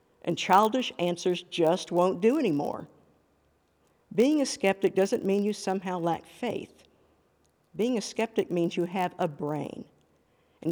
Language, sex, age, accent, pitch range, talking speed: English, female, 60-79, American, 170-220 Hz, 140 wpm